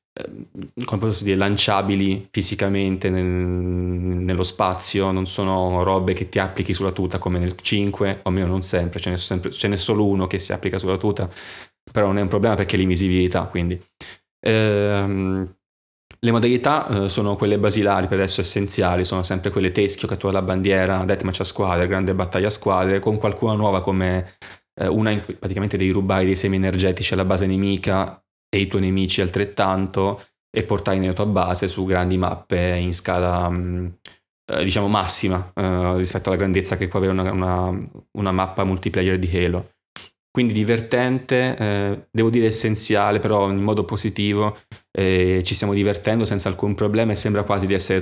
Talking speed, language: 170 wpm, Italian